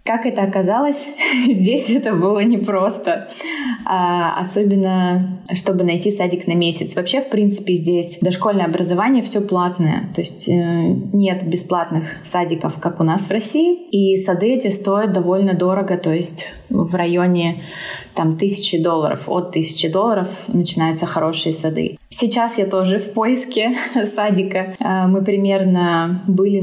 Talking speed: 130 wpm